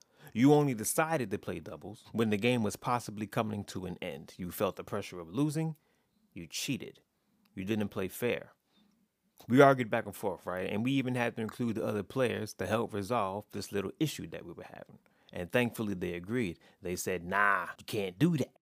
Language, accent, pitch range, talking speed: English, American, 95-125 Hz, 205 wpm